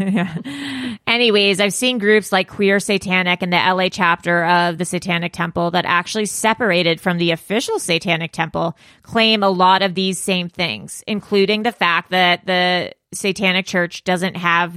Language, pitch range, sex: English, 170-195 Hz, female